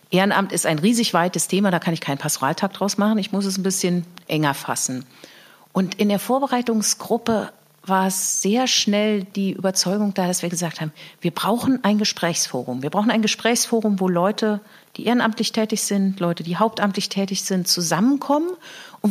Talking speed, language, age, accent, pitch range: 175 wpm, German, 40-59, German, 175-225 Hz